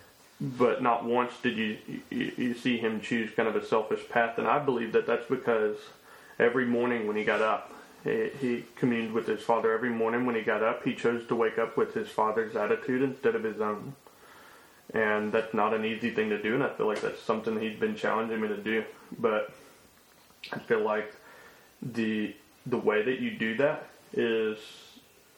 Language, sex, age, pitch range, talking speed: English, male, 20-39, 105-125 Hz, 195 wpm